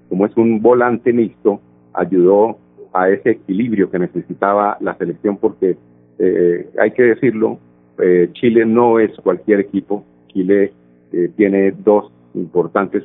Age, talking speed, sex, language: 50-69, 135 wpm, male, Spanish